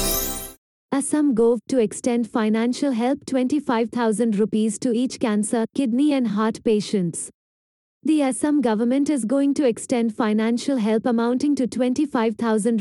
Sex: female